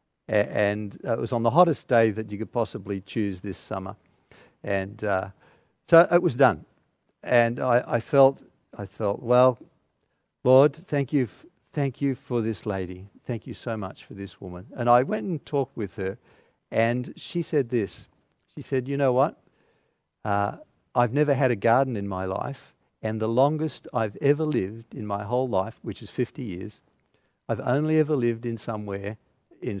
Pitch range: 105-135 Hz